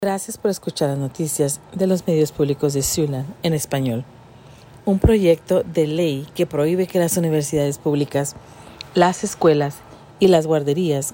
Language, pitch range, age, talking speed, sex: Spanish, 140-175 Hz, 40-59, 150 wpm, female